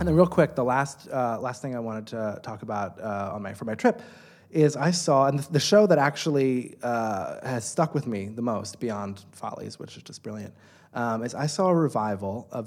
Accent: American